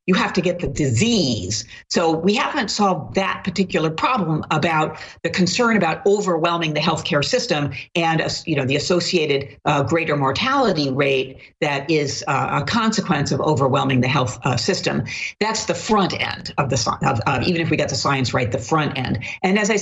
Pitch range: 145-200 Hz